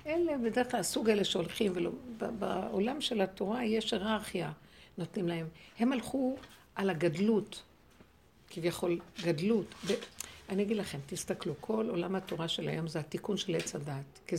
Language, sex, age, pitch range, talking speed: Hebrew, female, 60-79, 175-225 Hz, 135 wpm